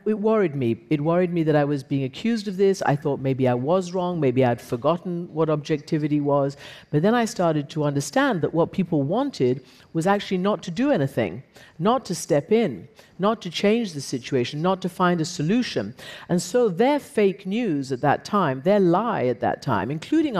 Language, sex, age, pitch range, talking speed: Arabic, female, 50-69, 140-195 Hz, 205 wpm